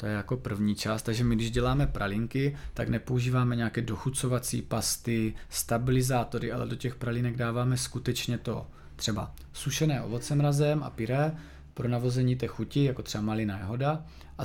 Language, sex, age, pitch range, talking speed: Czech, male, 20-39, 120-135 Hz, 160 wpm